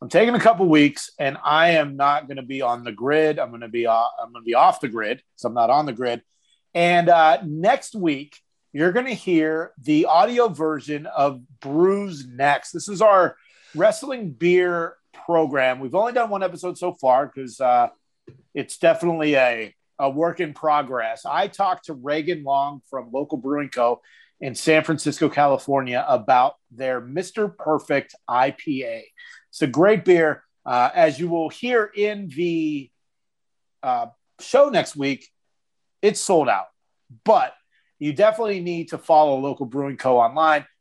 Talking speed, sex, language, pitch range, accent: 170 wpm, male, English, 140-185 Hz, American